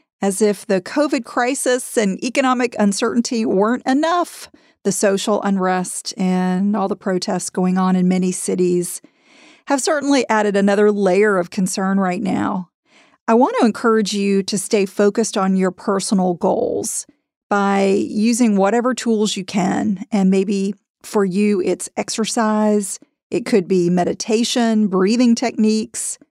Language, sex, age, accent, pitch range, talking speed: English, female, 40-59, American, 195-245 Hz, 135 wpm